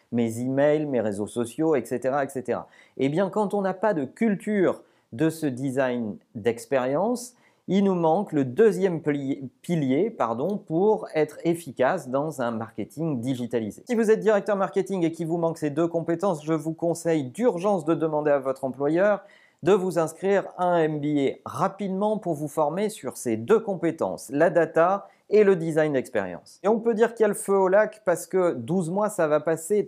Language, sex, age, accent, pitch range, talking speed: French, male, 40-59, French, 130-195 Hz, 190 wpm